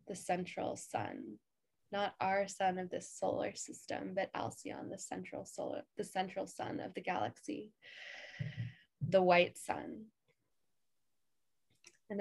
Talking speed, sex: 125 wpm, female